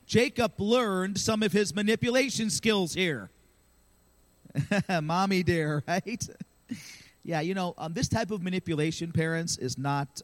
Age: 40-59